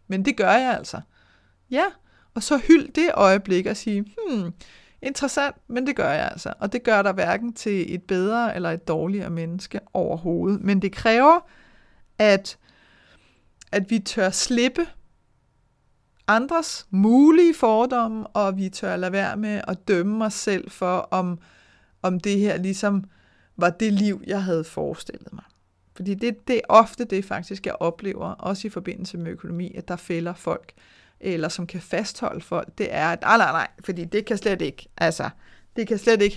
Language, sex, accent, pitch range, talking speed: Danish, female, native, 180-225 Hz, 175 wpm